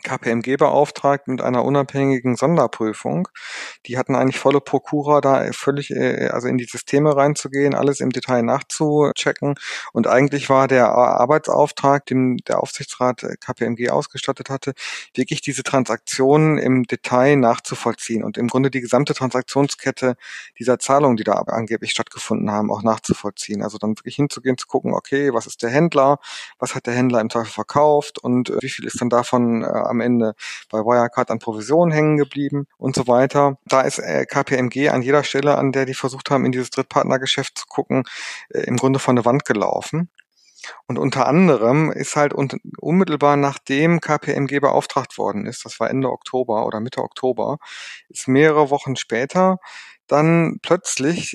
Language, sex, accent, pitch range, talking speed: German, male, German, 125-145 Hz, 160 wpm